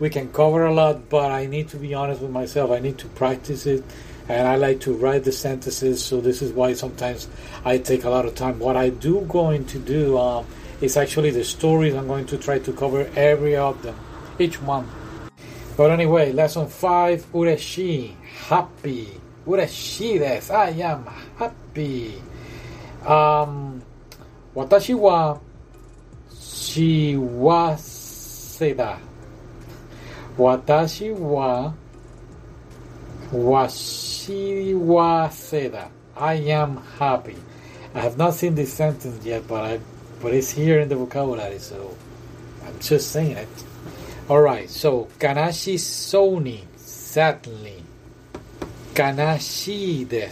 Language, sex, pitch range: Japanese, male, 125-155 Hz